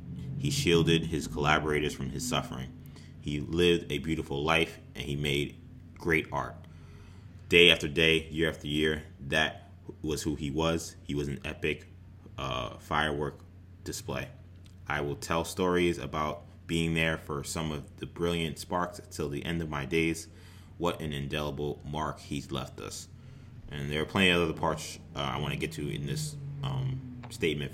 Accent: American